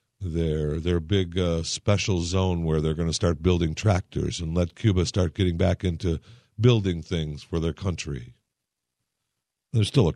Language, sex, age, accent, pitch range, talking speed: English, male, 50-69, American, 75-105 Hz, 165 wpm